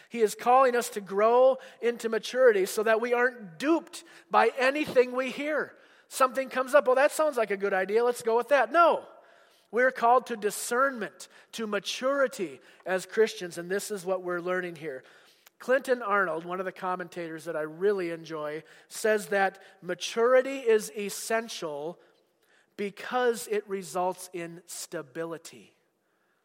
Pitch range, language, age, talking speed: 180-245 Hz, English, 40-59, 155 wpm